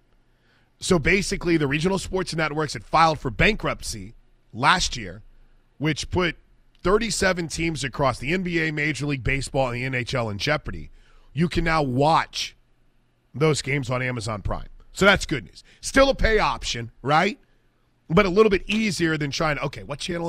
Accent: American